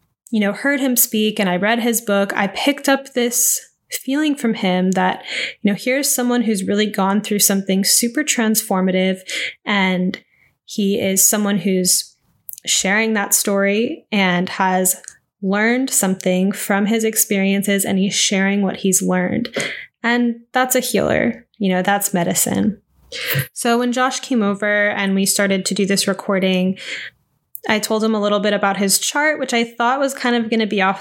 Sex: female